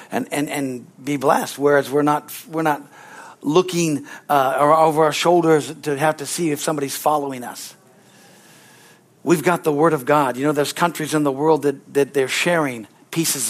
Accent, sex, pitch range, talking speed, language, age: American, male, 145-175 Hz, 180 wpm, English, 60-79